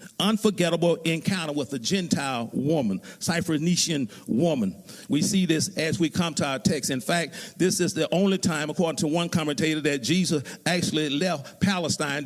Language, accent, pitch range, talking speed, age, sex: English, American, 155-195 Hz, 160 wpm, 50-69, male